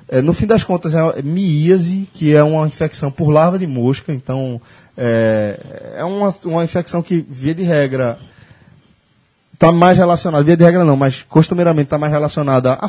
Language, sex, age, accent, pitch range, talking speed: Portuguese, male, 20-39, Brazilian, 130-180 Hz, 170 wpm